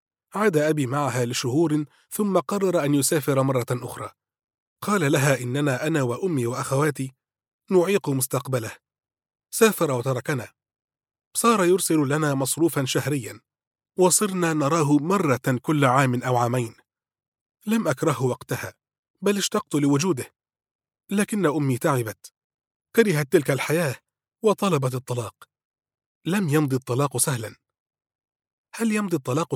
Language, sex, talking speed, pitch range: Arabic, male, 110 wpm, 130-170 Hz